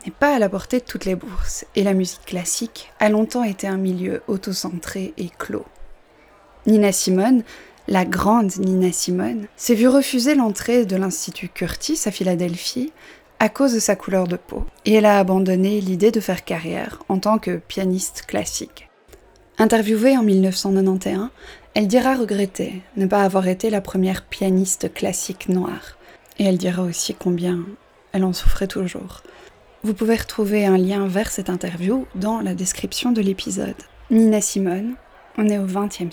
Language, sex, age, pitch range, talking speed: French, female, 20-39, 185-220 Hz, 165 wpm